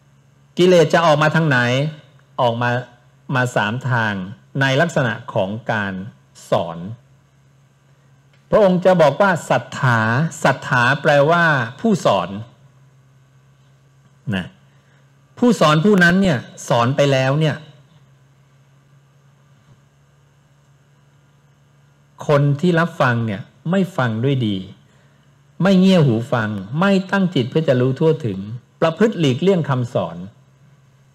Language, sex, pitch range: English, male, 130-150 Hz